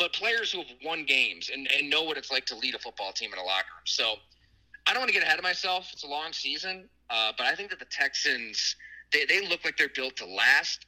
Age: 30-49